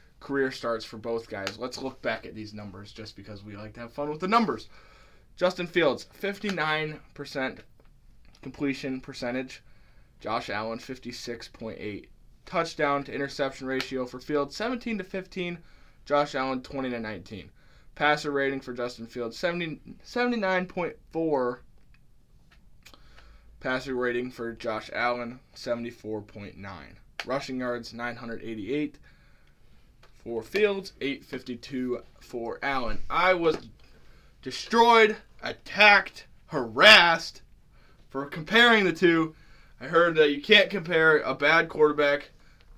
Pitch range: 120-155 Hz